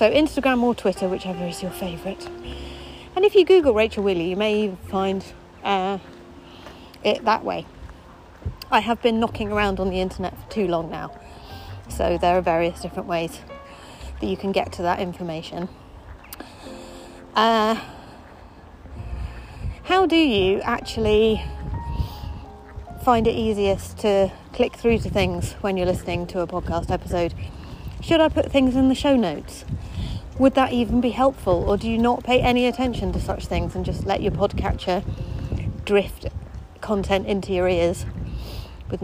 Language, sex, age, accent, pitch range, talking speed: English, female, 30-49, British, 165-235 Hz, 155 wpm